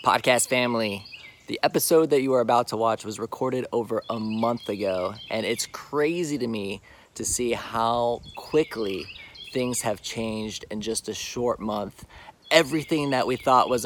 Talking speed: 165 wpm